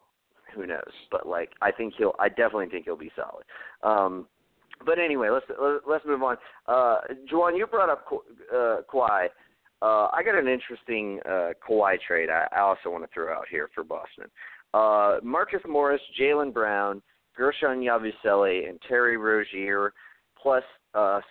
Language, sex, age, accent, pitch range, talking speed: English, male, 40-59, American, 105-140 Hz, 165 wpm